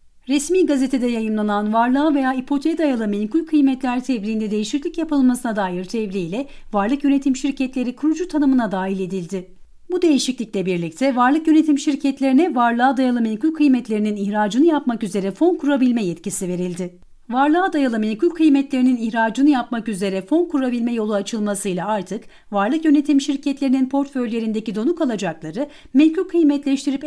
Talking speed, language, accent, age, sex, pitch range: 130 wpm, Turkish, native, 40-59, female, 205-285 Hz